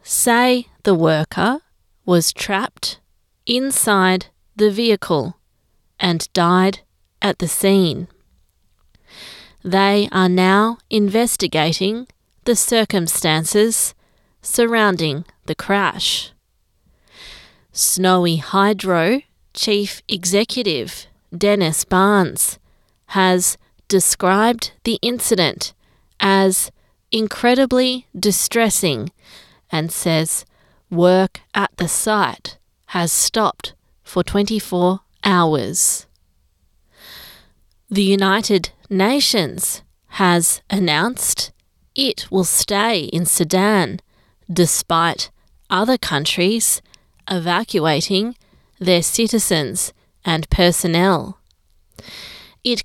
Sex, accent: female, Australian